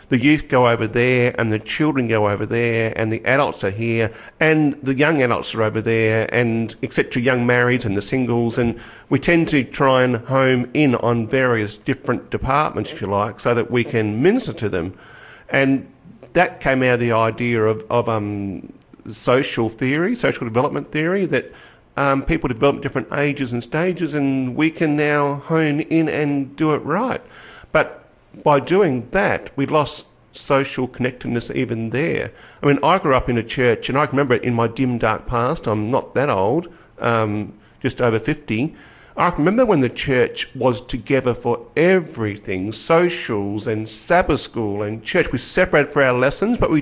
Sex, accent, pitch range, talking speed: male, Australian, 115-145 Hz, 185 wpm